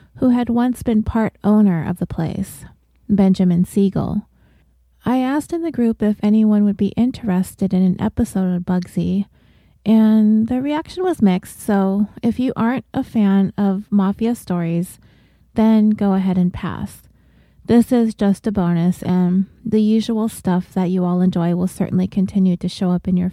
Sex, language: female, English